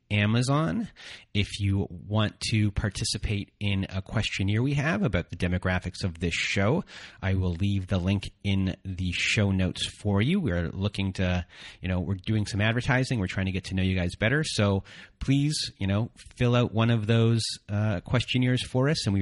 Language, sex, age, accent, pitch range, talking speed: English, male, 30-49, American, 95-115 Hz, 190 wpm